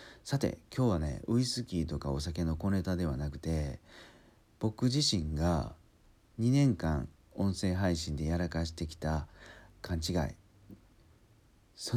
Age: 50-69